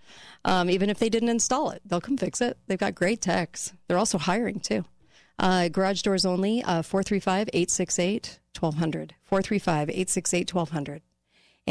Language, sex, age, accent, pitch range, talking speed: English, female, 40-59, American, 155-185 Hz, 135 wpm